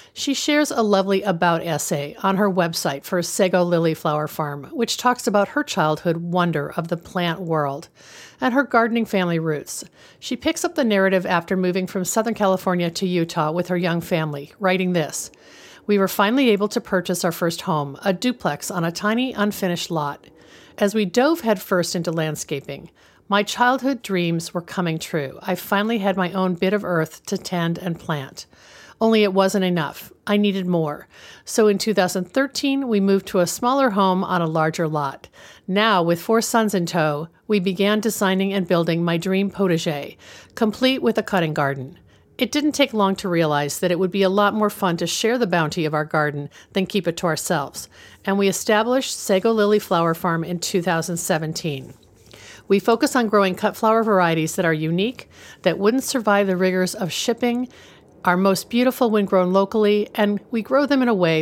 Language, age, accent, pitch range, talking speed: English, 50-69, American, 170-215 Hz, 185 wpm